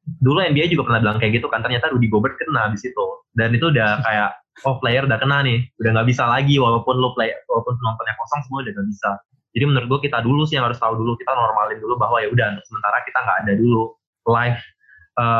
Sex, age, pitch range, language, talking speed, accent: male, 20-39, 110-135 Hz, Indonesian, 235 wpm, native